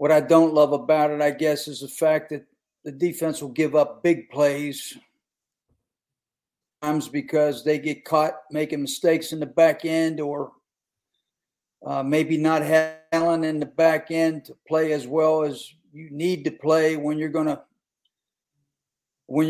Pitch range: 150-170 Hz